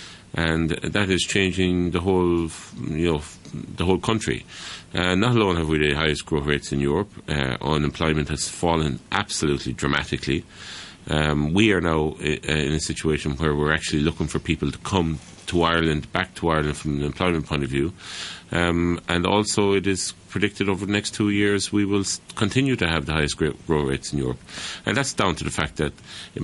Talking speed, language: 190 wpm, English